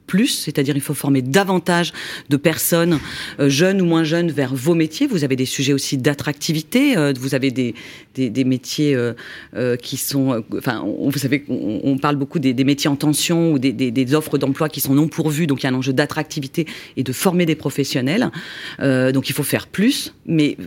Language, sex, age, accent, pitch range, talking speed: French, female, 40-59, French, 140-170 Hz, 220 wpm